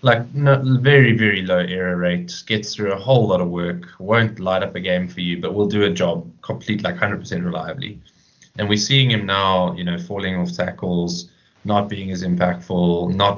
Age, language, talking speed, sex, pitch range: 20-39, English, 200 wpm, male, 90-110 Hz